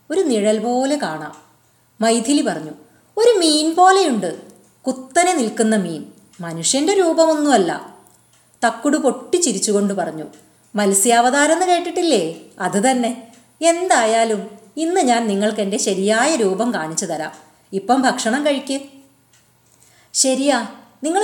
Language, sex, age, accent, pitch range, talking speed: Malayalam, female, 30-49, native, 200-280 Hz, 100 wpm